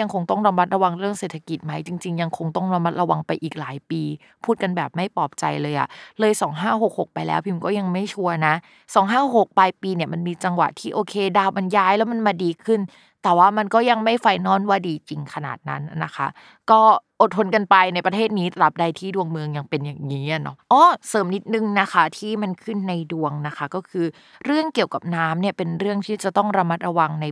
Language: Thai